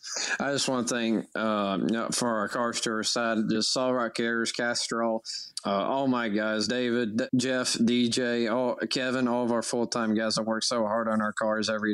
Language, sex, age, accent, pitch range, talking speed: English, male, 20-39, American, 110-120 Hz, 210 wpm